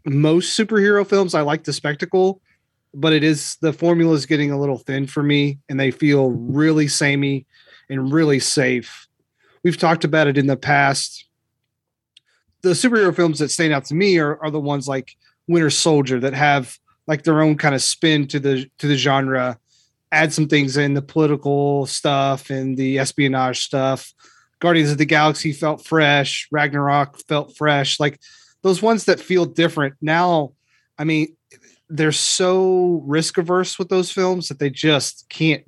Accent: American